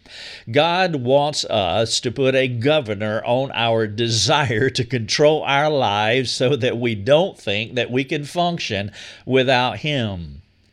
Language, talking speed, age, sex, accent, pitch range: English, 140 wpm, 50-69, male, American, 110-145 Hz